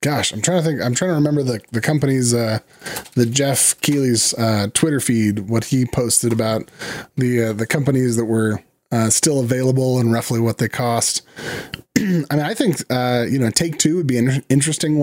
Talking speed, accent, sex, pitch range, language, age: 200 wpm, American, male, 115-140 Hz, English, 30-49